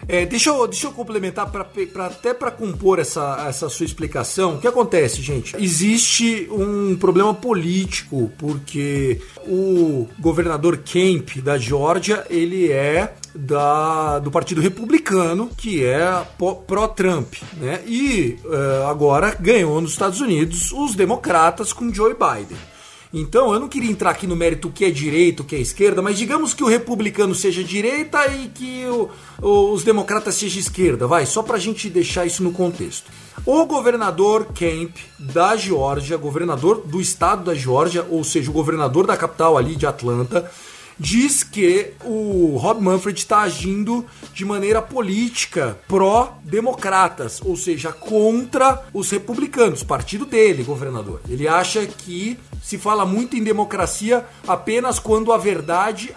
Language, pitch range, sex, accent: Portuguese, 170-220 Hz, male, Brazilian